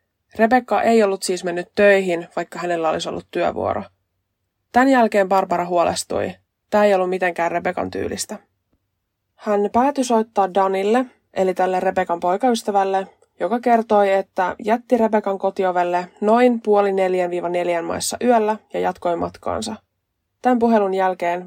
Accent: native